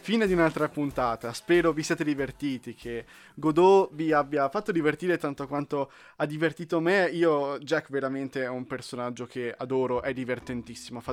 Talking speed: 160 wpm